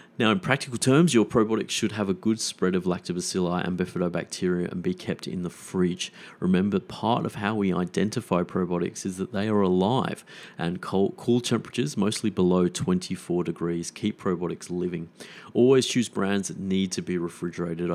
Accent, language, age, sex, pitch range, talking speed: Australian, English, 30-49, male, 90-110 Hz, 175 wpm